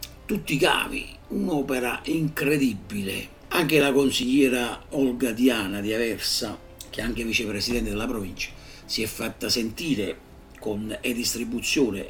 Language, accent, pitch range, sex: Italian, native, 105-135 Hz, male